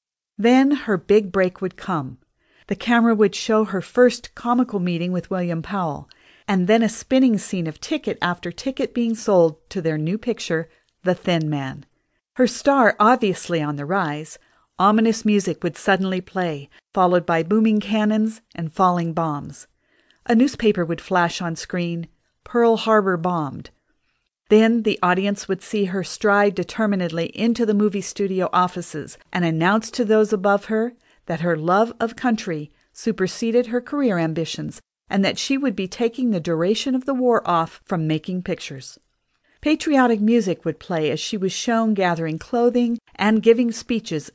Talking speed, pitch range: 160 wpm, 170-225 Hz